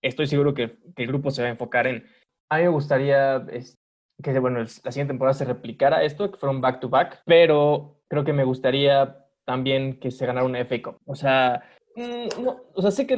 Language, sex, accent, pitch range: Spanish, male, Mexican, 125-155 Hz